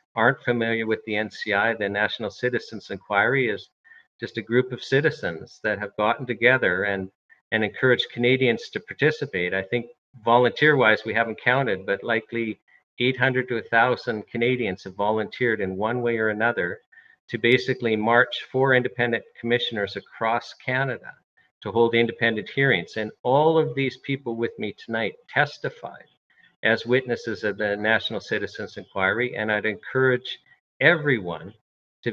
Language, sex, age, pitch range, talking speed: English, male, 50-69, 110-130 Hz, 145 wpm